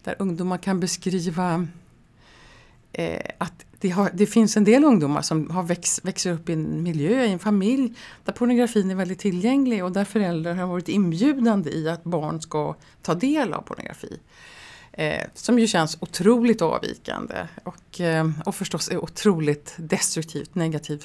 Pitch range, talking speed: 160-210 Hz, 145 wpm